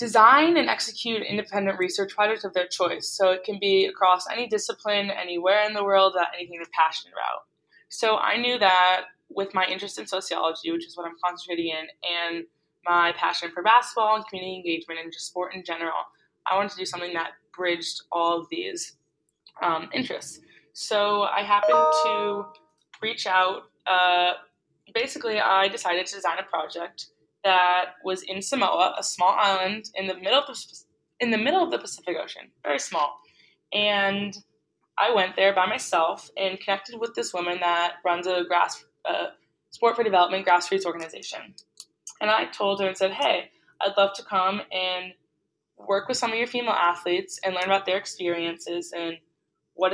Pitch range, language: 175-205 Hz, English